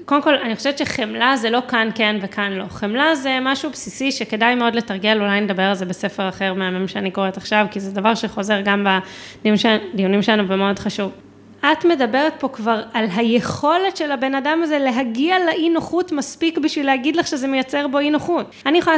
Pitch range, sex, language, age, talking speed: 205-285 Hz, female, Hebrew, 20-39, 195 wpm